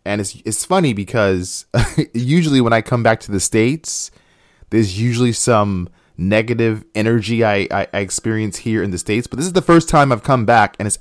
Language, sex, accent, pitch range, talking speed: English, male, American, 100-125 Hz, 195 wpm